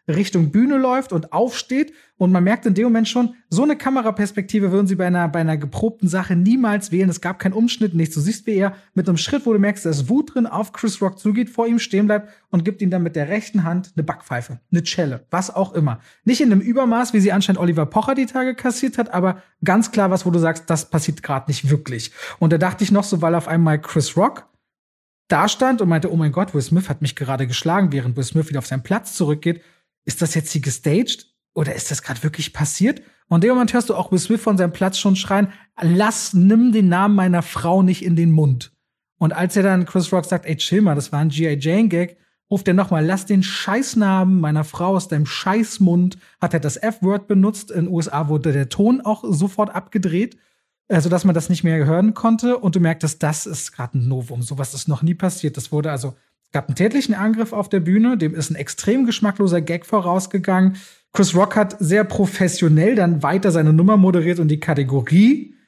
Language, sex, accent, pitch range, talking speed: German, male, German, 160-210 Hz, 225 wpm